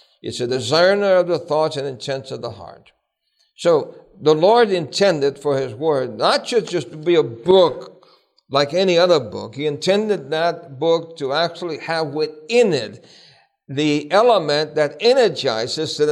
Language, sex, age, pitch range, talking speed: English, male, 60-79, 140-190 Hz, 155 wpm